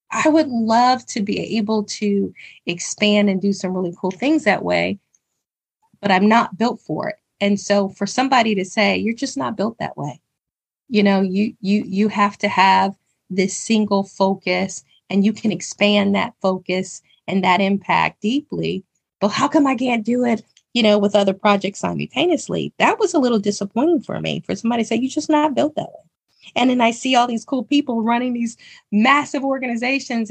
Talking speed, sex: 195 wpm, female